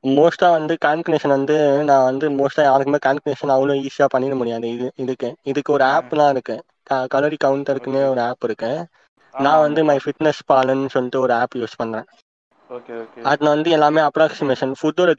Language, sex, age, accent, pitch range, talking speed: Tamil, male, 20-39, native, 130-155 Hz, 160 wpm